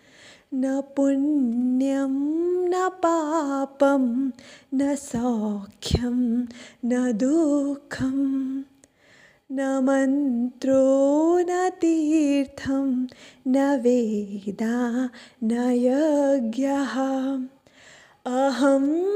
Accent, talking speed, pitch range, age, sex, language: native, 50 wpm, 255-310 Hz, 20-39, female, Hindi